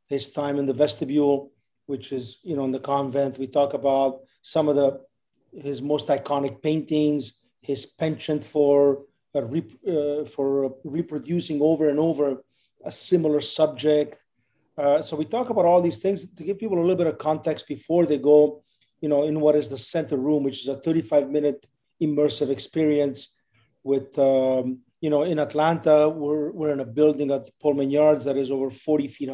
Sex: male